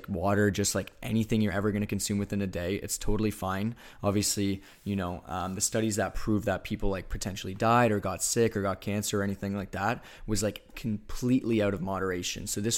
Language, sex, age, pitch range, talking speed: English, male, 20-39, 95-110 Hz, 215 wpm